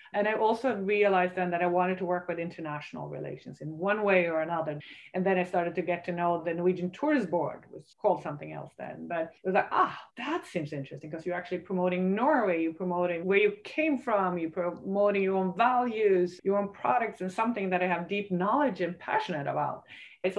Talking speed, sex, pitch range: 220 wpm, female, 175-215 Hz